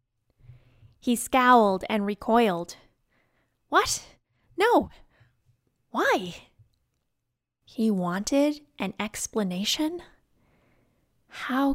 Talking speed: 60 wpm